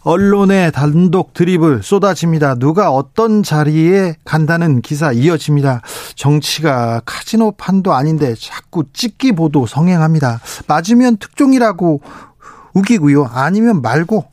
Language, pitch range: Korean, 140-205 Hz